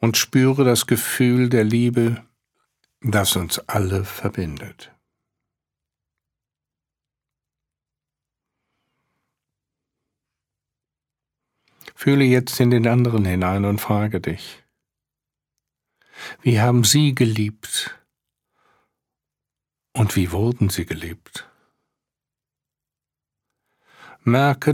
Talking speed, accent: 70 wpm, German